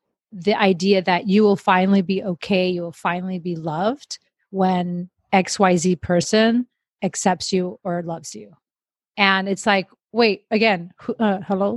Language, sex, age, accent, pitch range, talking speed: English, female, 30-49, American, 185-215 Hz, 150 wpm